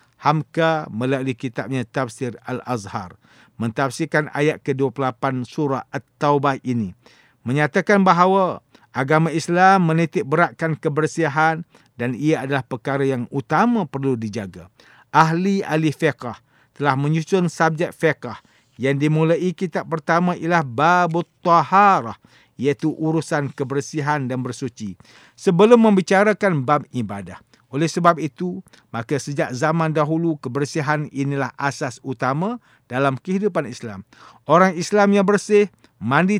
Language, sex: English, male